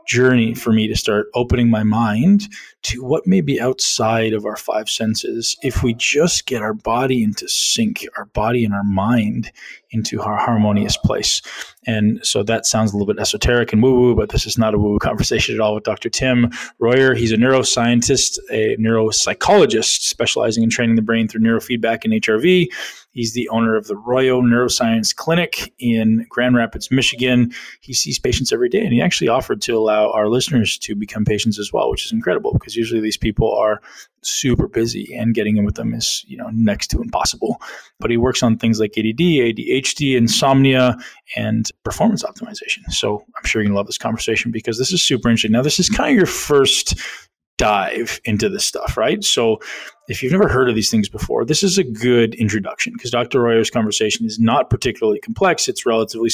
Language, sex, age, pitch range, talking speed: English, male, 20-39, 110-130 Hz, 195 wpm